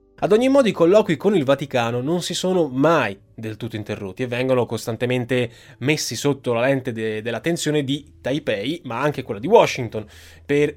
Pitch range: 110-140 Hz